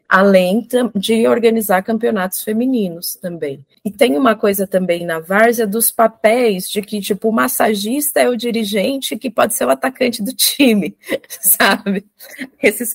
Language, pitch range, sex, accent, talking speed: Portuguese, 185-245 Hz, female, Brazilian, 150 wpm